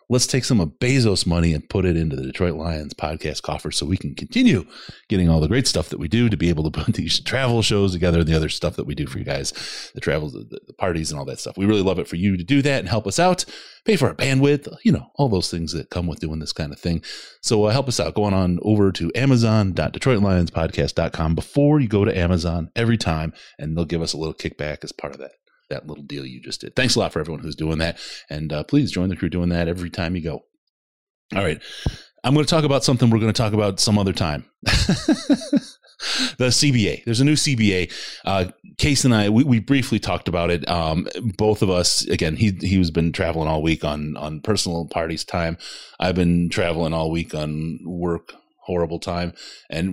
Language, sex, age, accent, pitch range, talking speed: English, male, 30-49, American, 80-115 Hz, 240 wpm